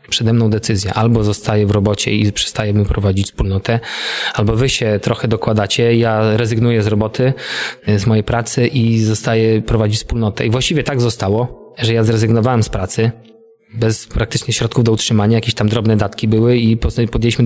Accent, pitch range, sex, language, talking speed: native, 115-150 Hz, male, Polish, 165 wpm